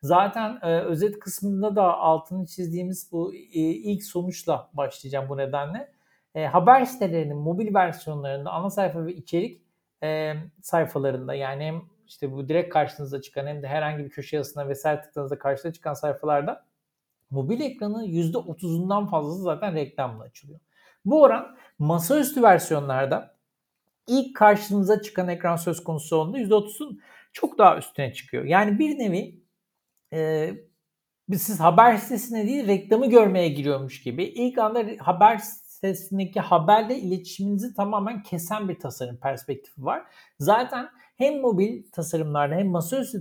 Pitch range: 155-210 Hz